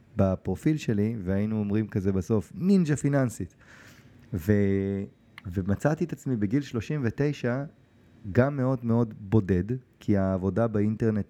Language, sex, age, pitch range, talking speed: Hebrew, male, 30-49, 100-120 Hz, 110 wpm